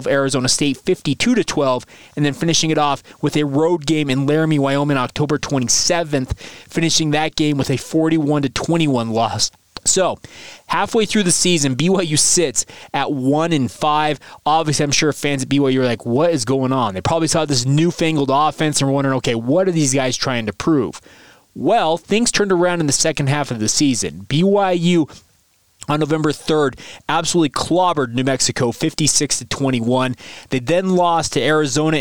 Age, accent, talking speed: 20-39, American, 180 wpm